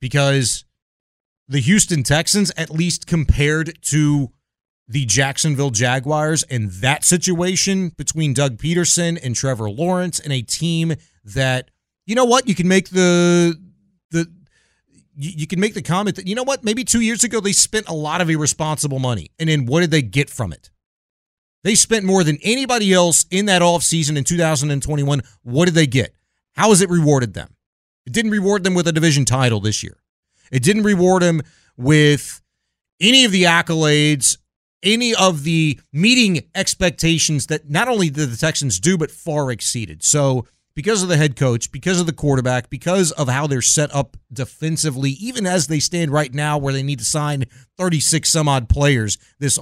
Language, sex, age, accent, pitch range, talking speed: English, male, 30-49, American, 135-180 Hz, 175 wpm